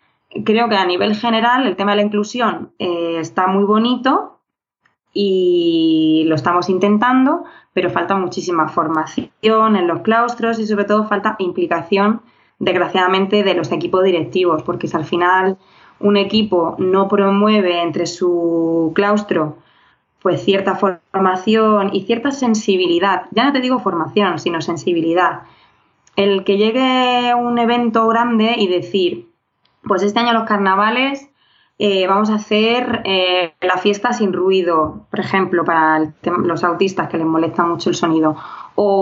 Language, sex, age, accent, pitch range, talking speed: Spanish, female, 20-39, Spanish, 180-220 Hz, 145 wpm